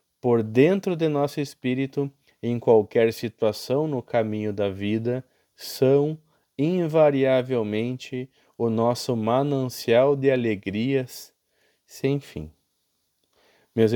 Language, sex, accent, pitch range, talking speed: Portuguese, male, Brazilian, 105-130 Hz, 95 wpm